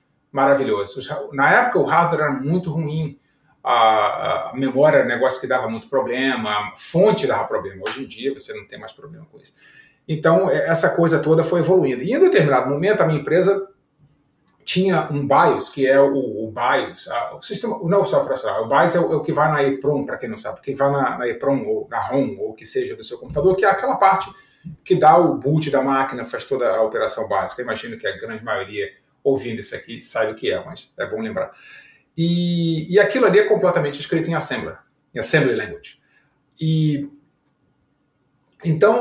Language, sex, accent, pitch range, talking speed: Portuguese, male, Brazilian, 135-185 Hz, 195 wpm